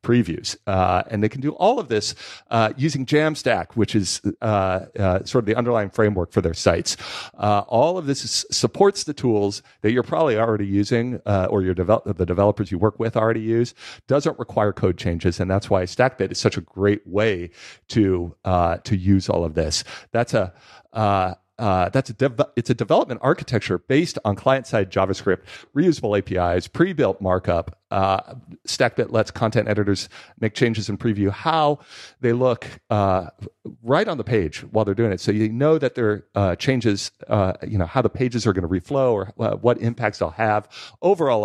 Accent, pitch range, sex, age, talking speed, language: American, 95-125 Hz, male, 50-69, 190 wpm, English